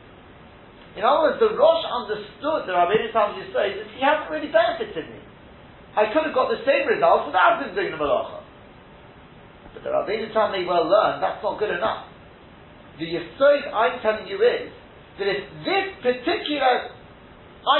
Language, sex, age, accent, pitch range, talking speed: English, male, 40-59, British, 170-275 Hz, 175 wpm